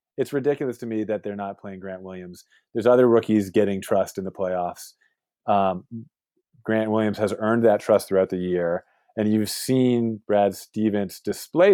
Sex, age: male, 30-49